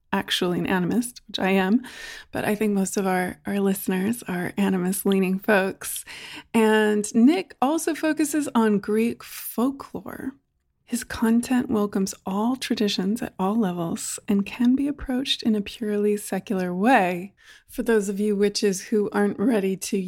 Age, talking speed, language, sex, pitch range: 20-39, 150 wpm, English, female, 195-245 Hz